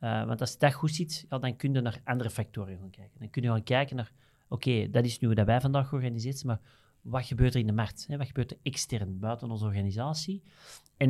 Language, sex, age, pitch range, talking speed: Dutch, male, 40-59, 115-145 Hz, 260 wpm